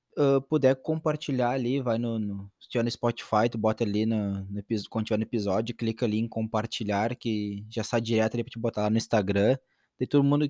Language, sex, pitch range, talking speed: Portuguese, male, 110-130 Hz, 205 wpm